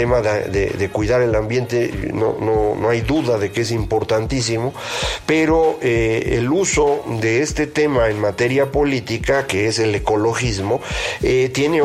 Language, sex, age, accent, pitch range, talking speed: Spanish, male, 50-69, Mexican, 110-140 Hz, 155 wpm